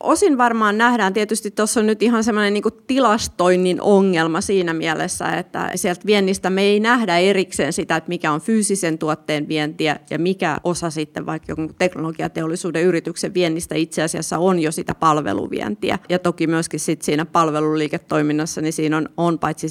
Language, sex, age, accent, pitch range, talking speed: Finnish, female, 30-49, native, 160-200 Hz, 160 wpm